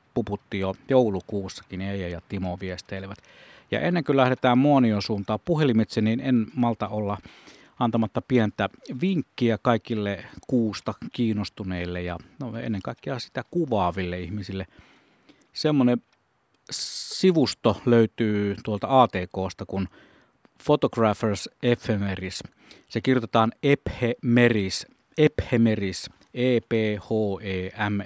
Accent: native